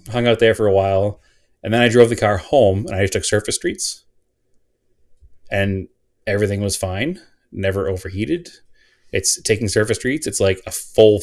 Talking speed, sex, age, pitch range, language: 175 wpm, male, 30-49, 90-110 Hz, English